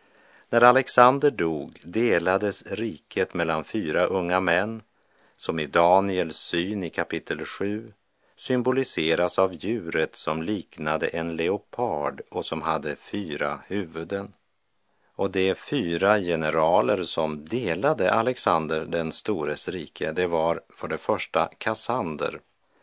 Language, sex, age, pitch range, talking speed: Swedish, male, 50-69, 80-100 Hz, 115 wpm